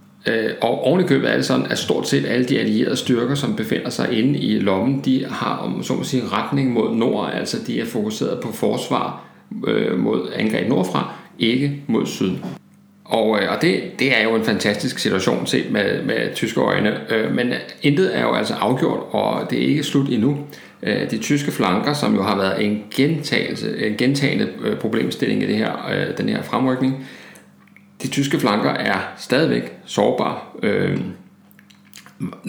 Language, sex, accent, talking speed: Danish, male, native, 160 wpm